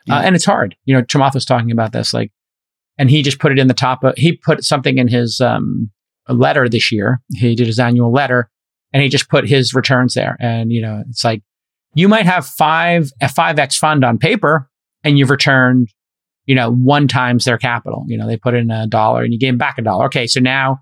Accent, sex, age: American, male, 30-49